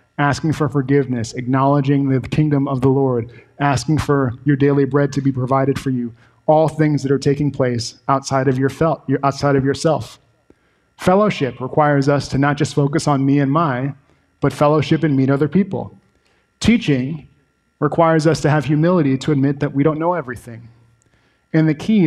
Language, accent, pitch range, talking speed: English, American, 130-150 Hz, 170 wpm